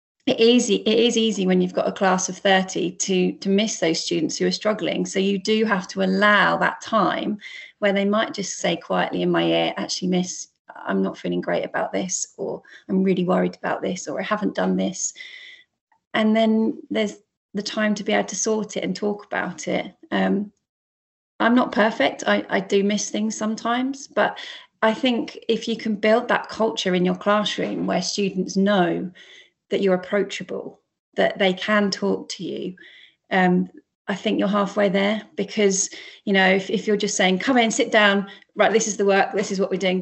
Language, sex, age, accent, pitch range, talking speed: English, female, 30-49, British, 180-210 Hz, 200 wpm